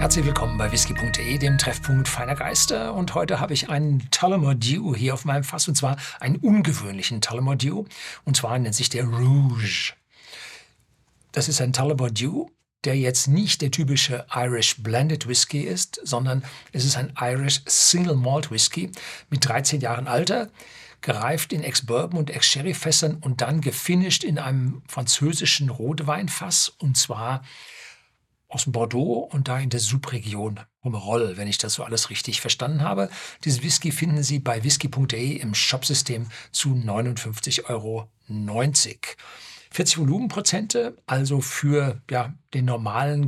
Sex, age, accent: male, 60-79, German